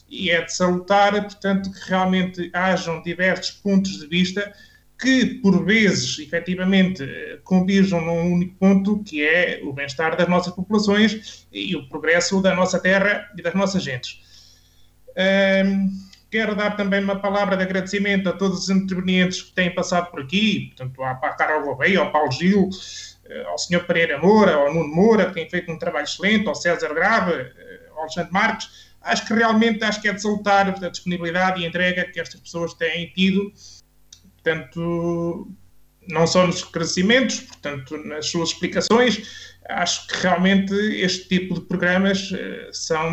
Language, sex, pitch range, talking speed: Portuguese, male, 165-195 Hz, 160 wpm